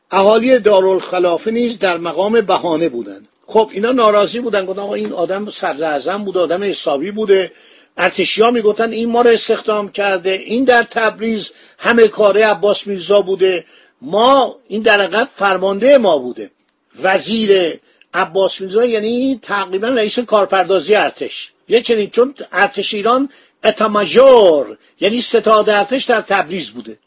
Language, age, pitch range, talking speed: Persian, 50-69, 190-235 Hz, 135 wpm